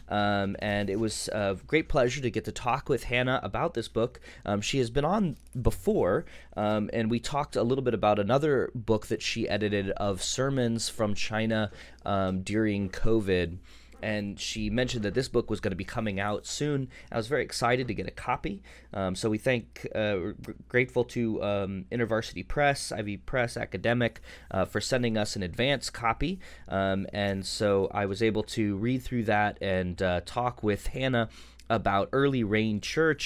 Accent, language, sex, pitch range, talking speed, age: American, English, male, 100-120 Hz, 185 wpm, 20-39